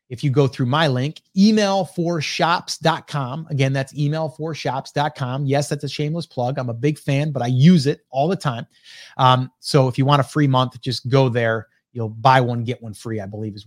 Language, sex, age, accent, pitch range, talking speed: English, male, 30-49, American, 140-195 Hz, 200 wpm